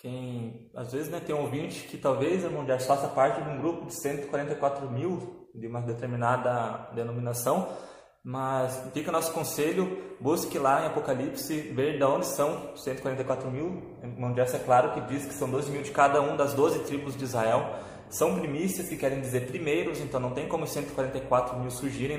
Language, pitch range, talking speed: Portuguese, 125-145 Hz, 185 wpm